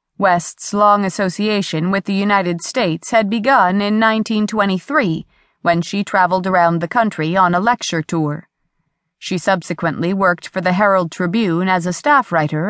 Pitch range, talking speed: 170-225 Hz, 150 wpm